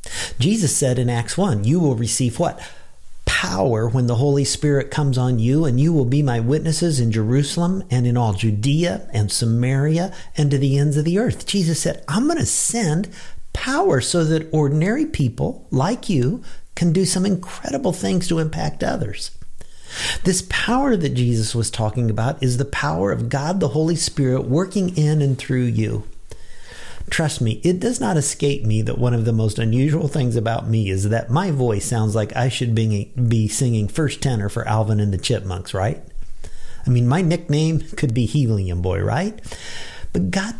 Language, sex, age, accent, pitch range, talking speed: English, male, 50-69, American, 115-165 Hz, 185 wpm